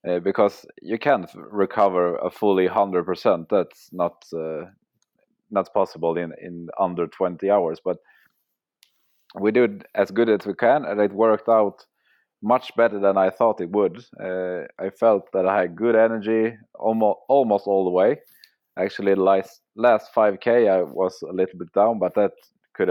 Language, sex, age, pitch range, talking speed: English, male, 30-49, 95-115 Hz, 170 wpm